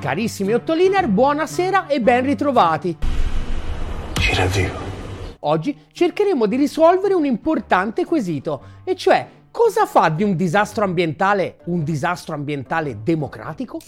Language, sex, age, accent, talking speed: Italian, male, 30-49, native, 110 wpm